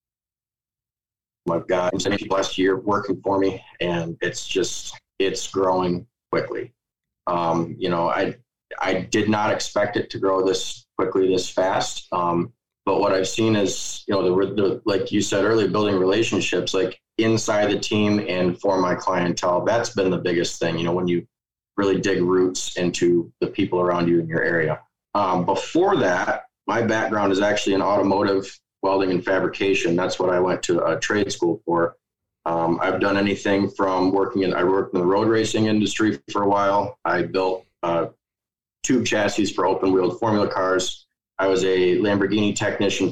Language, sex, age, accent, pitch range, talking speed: English, male, 20-39, American, 90-105 Hz, 175 wpm